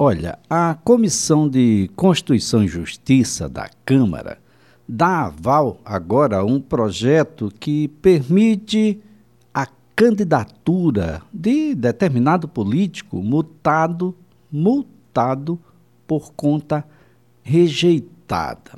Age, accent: 60-79, Brazilian